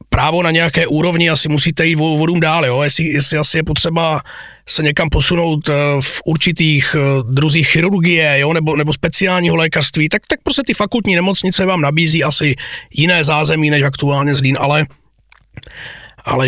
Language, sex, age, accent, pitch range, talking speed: Czech, male, 30-49, native, 155-200 Hz, 160 wpm